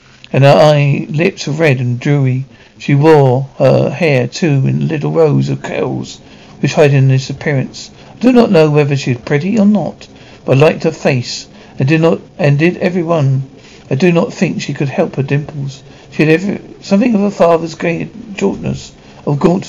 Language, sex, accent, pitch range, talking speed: English, male, British, 130-165 Hz, 200 wpm